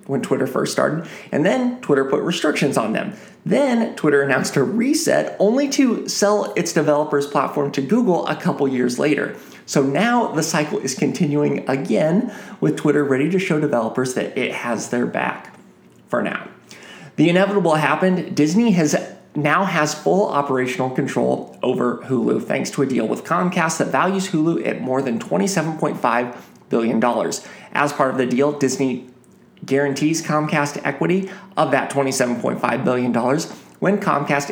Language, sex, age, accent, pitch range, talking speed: English, male, 30-49, American, 135-185 Hz, 155 wpm